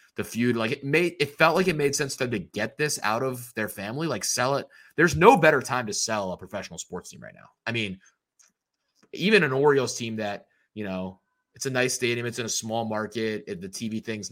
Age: 20-39